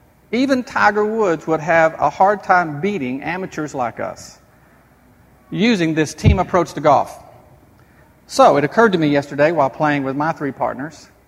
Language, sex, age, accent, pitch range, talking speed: English, male, 50-69, American, 150-200 Hz, 160 wpm